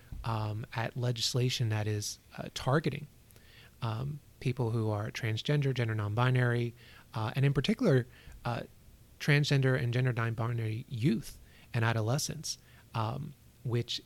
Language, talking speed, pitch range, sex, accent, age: English, 120 wpm, 115-140 Hz, male, American, 30-49